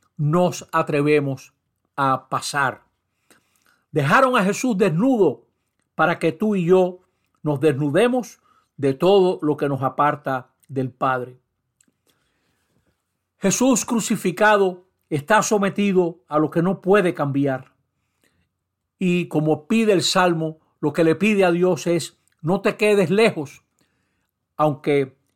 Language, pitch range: Spanish, 145-185 Hz